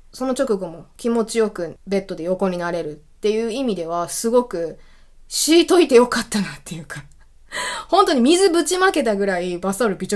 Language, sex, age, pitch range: Japanese, female, 20-39, 185-300 Hz